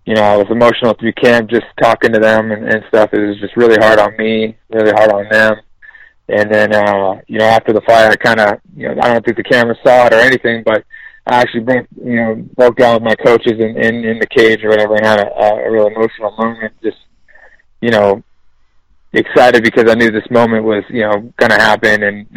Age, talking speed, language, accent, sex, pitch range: 20-39, 230 wpm, English, American, male, 105-115 Hz